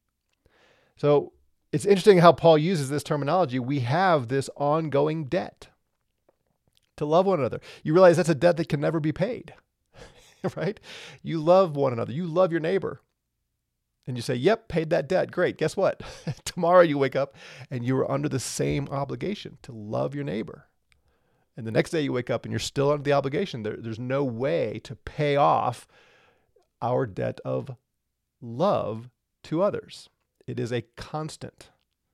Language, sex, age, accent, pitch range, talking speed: English, male, 40-59, American, 130-165 Hz, 170 wpm